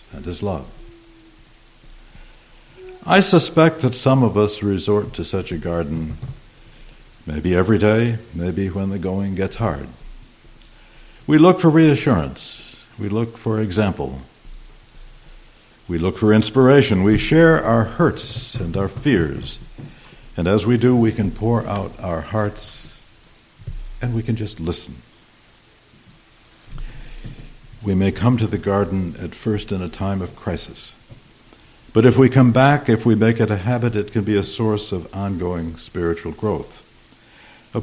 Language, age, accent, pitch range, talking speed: English, 60-79, American, 95-125 Hz, 145 wpm